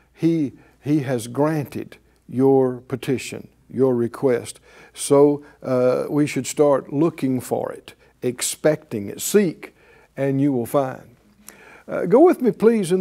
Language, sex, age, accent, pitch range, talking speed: English, male, 60-79, American, 130-170 Hz, 135 wpm